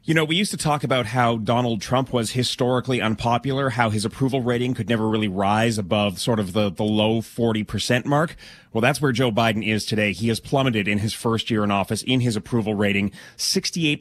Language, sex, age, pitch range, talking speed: English, male, 30-49, 110-140 Hz, 220 wpm